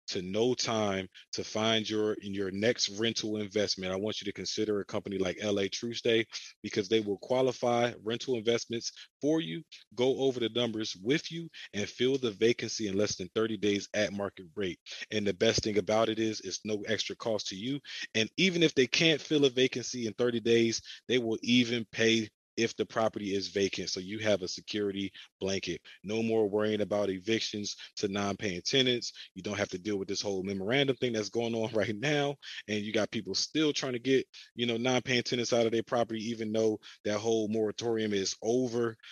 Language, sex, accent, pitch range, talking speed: English, male, American, 100-115 Hz, 205 wpm